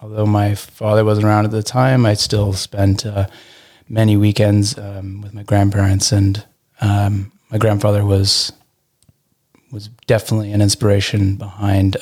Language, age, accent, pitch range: English, 20-39, American, 100-110 Hz